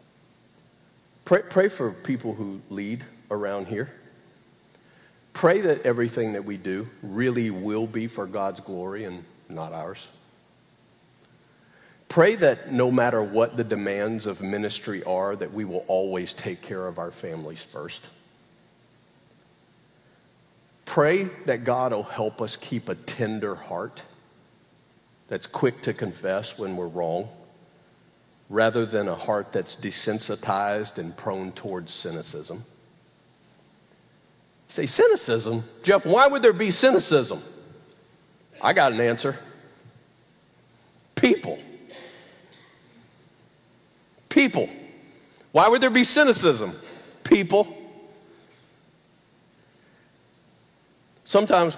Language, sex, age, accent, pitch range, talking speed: English, male, 50-69, American, 100-170 Hz, 105 wpm